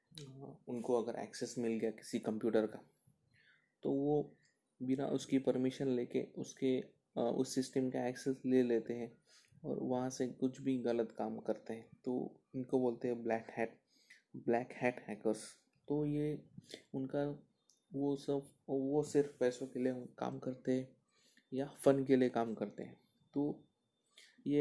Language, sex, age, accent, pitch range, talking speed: Hindi, male, 20-39, native, 115-135 Hz, 150 wpm